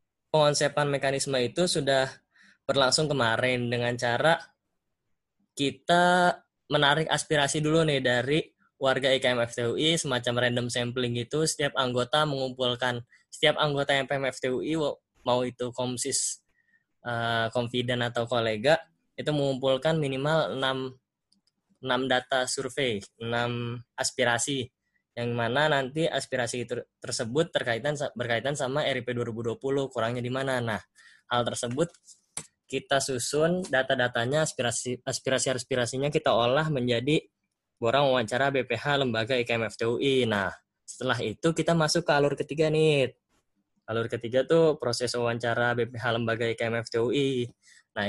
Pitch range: 120-140 Hz